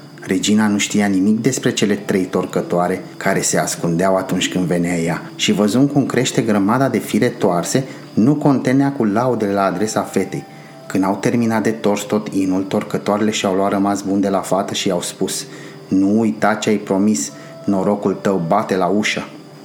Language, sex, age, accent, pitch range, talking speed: Romanian, male, 30-49, native, 95-125 Hz, 175 wpm